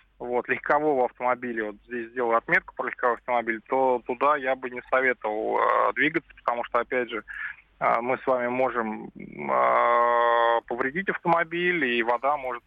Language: Russian